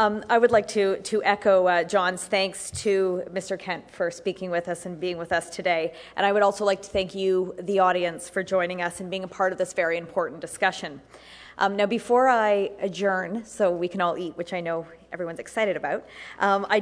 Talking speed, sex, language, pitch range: 220 wpm, female, English, 180-210 Hz